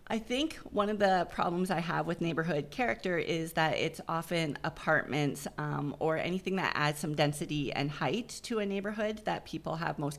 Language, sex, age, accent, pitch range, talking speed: English, female, 30-49, American, 150-185 Hz, 190 wpm